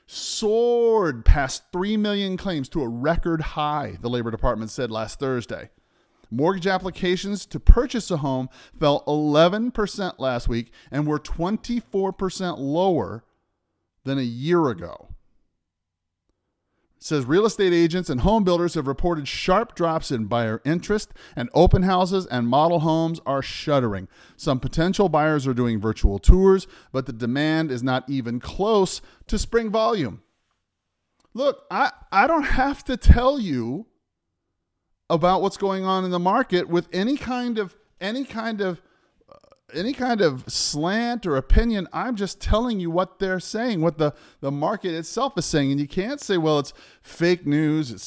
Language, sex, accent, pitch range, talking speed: English, male, American, 135-205 Hz, 155 wpm